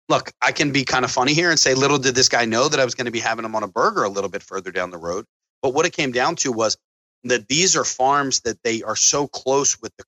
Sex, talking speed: male, 305 wpm